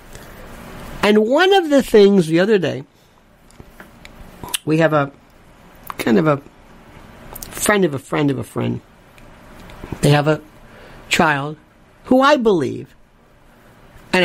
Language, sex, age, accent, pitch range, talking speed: English, male, 60-79, American, 140-205 Hz, 120 wpm